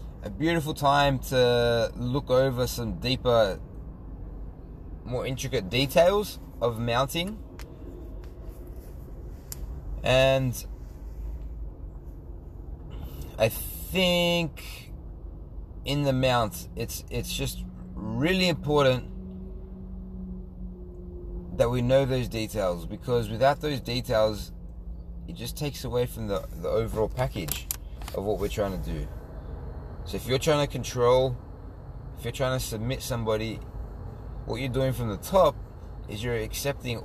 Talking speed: 110 wpm